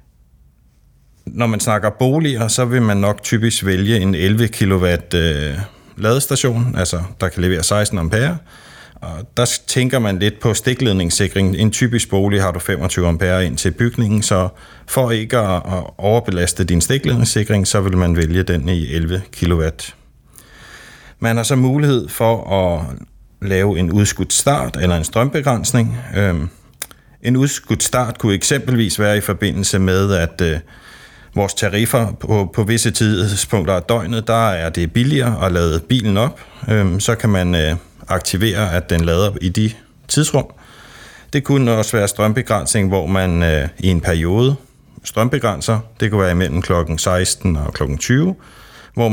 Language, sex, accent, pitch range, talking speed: Danish, male, native, 90-115 Hz, 150 wpm